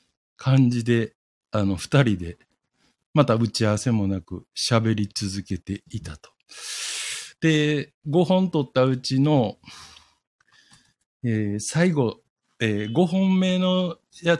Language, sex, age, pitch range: Japanese, male, 60-79, 110-160 Hz